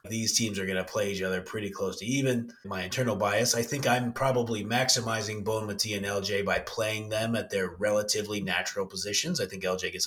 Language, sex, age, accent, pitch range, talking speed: English, male, 30-49, American, 95-125 Hz, 215 wpm